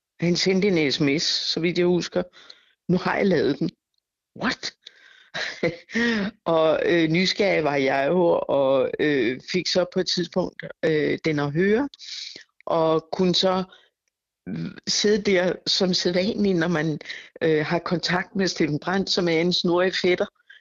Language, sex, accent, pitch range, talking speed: Danish, female, native, 155-190 Hz, 155 wpm